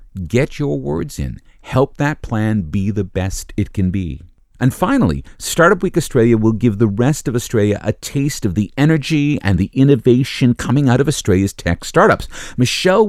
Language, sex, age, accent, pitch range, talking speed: English, male, 50-69, American, 85-125 Hz, 180 wpm